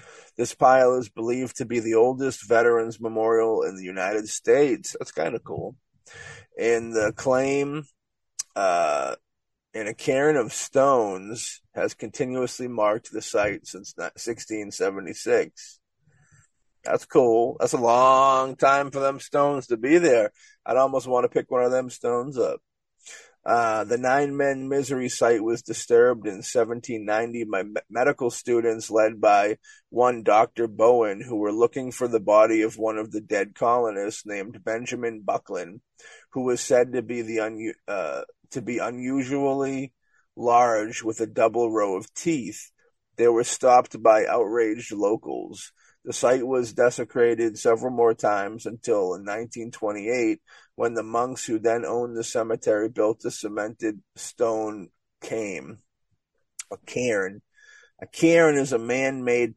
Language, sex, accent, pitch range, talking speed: English, male, American, 115-135 Hz, 145 wpm